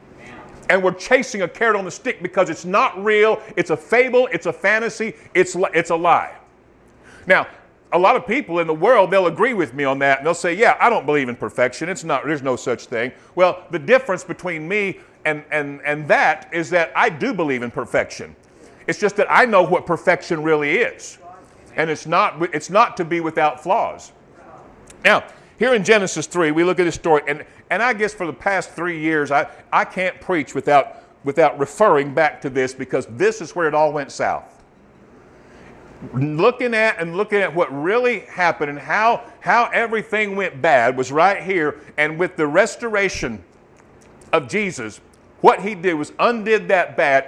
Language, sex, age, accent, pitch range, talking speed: English, male, 50-69, American, 150-195 Hz, 195 wpm